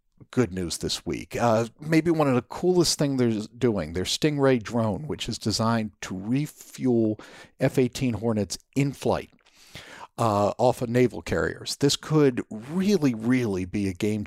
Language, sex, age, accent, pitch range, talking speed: English, male, 50-69, American, 100-130 Hz, 155 wpm